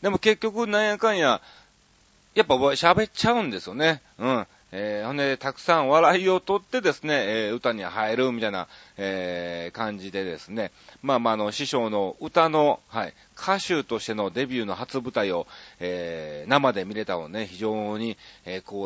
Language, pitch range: Japanese, 105-150 Hz